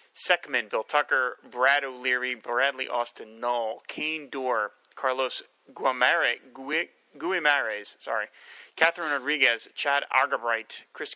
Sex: male